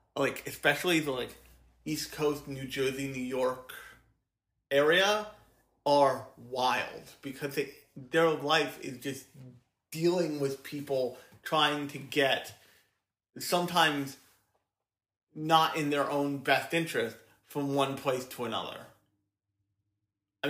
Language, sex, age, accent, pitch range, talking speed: English, male, 30-49, American, 125-155 Hz, 110 wpm